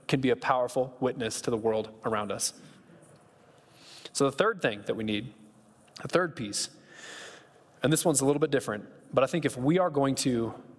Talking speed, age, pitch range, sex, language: 195 wpm, 20-39, 125-155 Hz, male, English